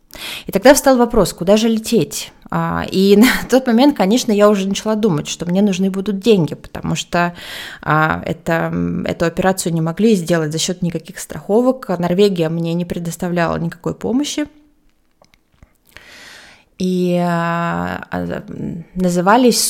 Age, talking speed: 20-39, 120 wpm